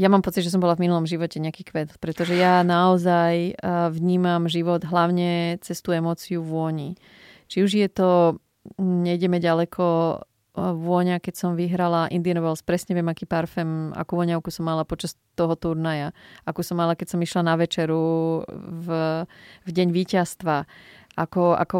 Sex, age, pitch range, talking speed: female, 30-49, 165-185 Hz, 155 wpm